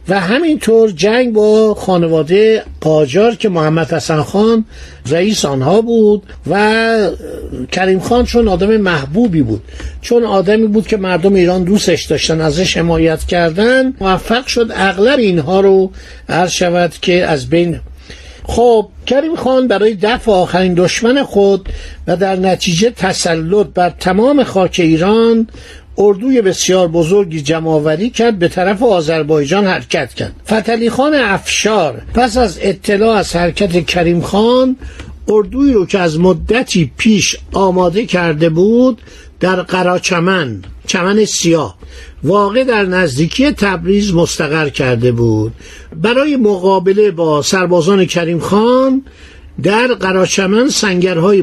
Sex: male